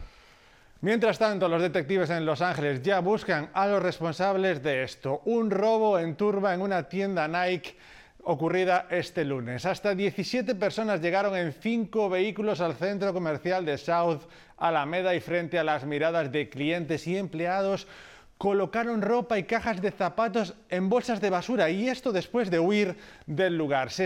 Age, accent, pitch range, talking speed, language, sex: 30-49, Spanish, 165-200 Hz, 160 wpm, Spanish, male